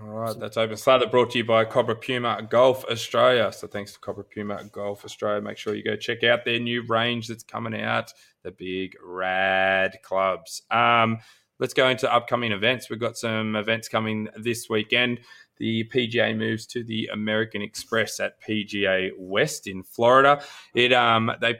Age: 20-39